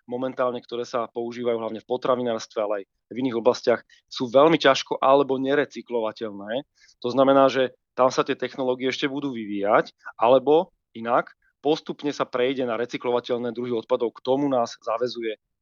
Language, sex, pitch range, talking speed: Slovak, male, 120-140 Hz, 155 wpm